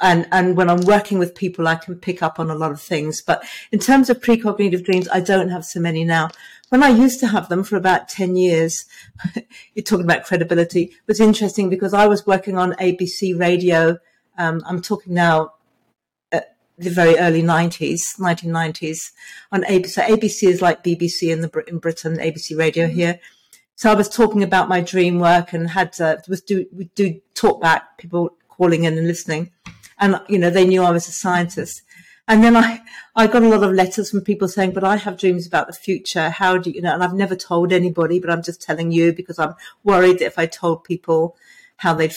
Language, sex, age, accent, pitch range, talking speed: English, female, 50-69, British, 170-200 Hz, 210 wpm